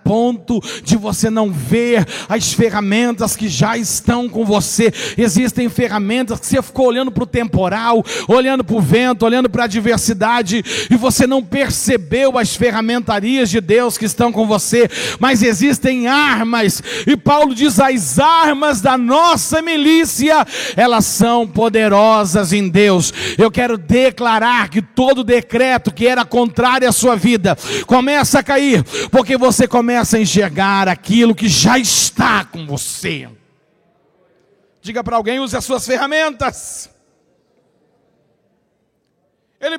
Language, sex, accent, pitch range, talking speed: Portuguese, male, Brazilian, 220-275 Hz, 140 wpm